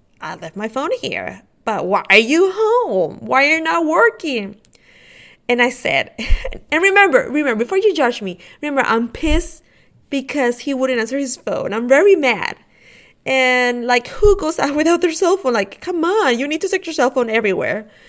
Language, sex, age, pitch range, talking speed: English, female, 20-39, 215-300 Hz, 190 wpm